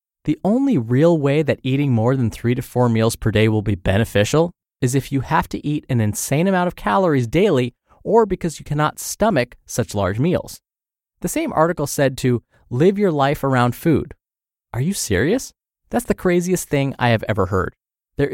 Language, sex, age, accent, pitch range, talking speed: English, male, 20-39, American, 110-175 Hz, 195 wpm